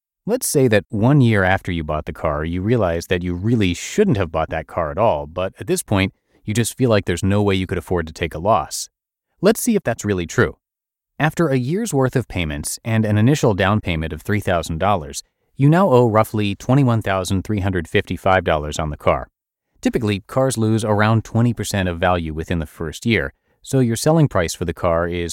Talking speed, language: 205 wpm, English